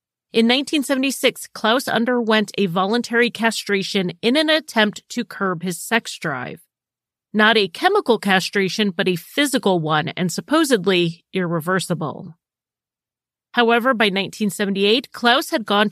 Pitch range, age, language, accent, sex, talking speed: 185-255 Hz, 30-49, English, American, female, 120 wpm